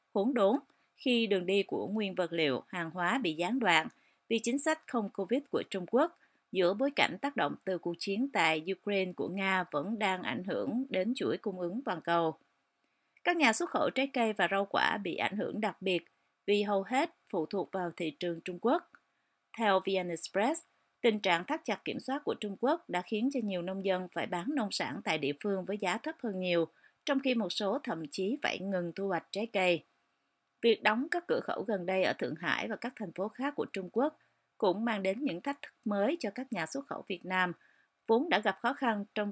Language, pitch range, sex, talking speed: Vietnamese, 180-250 Hz, female, 225 wpm